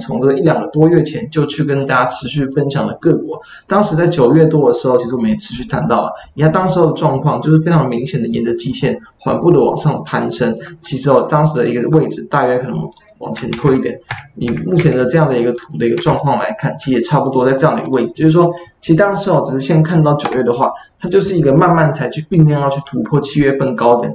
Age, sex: 20-39, male